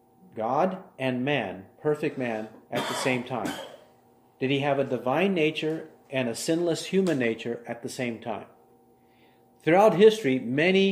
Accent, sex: American, male